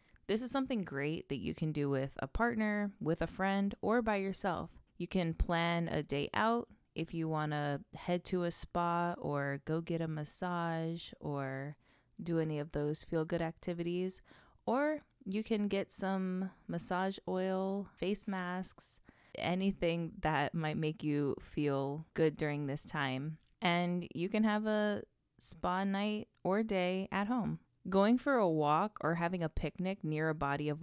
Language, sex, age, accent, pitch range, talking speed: English, female, 20-39, American, 150-190 Hz, 165 wpm